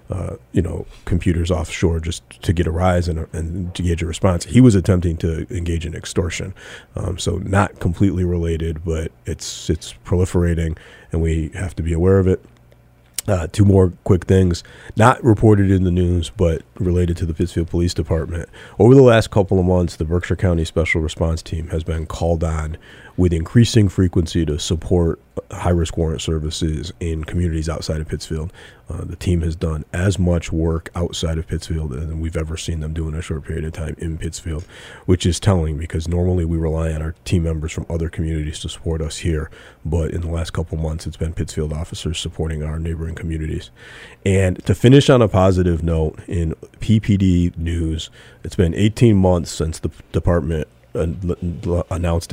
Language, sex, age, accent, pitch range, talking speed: English, male, 30-49, American, 80-90 Hz, 185 wpm